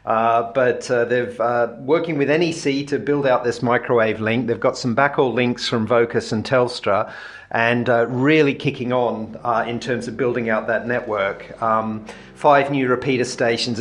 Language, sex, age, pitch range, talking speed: English, male, 40-59, 115-125 Hz, 175 wpm